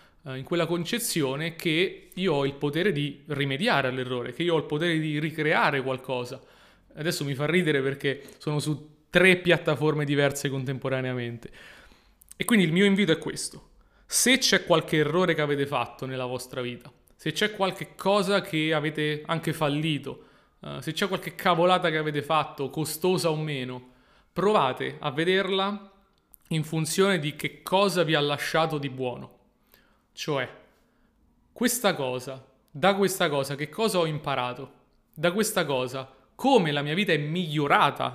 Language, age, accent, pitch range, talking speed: Italian, 30-49, native, 140-180 Hz, 155 wpm